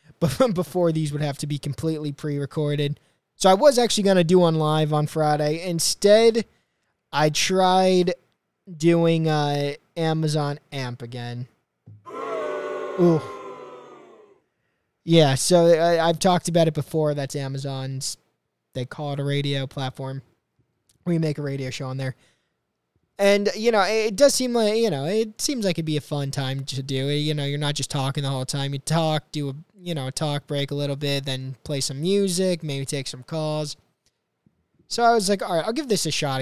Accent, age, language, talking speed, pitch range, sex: American, 20-39, English, 185 wpm, 140-180 Hz, male